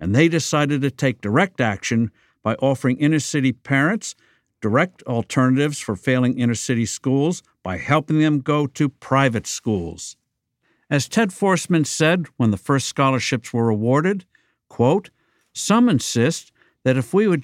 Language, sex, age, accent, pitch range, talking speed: English, male, 60-79, American, 120-155 Hz, 140 wpm